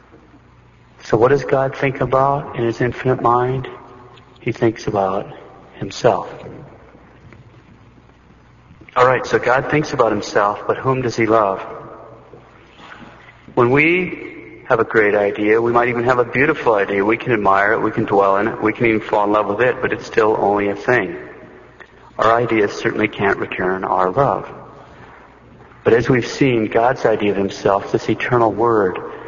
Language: English